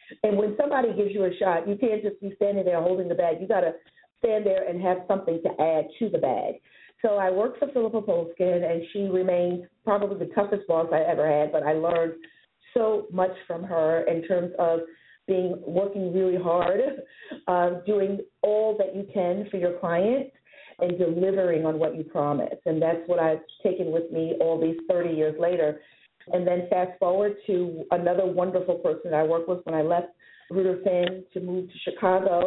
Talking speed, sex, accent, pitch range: 195 wpm, female, American, 170-200 Hz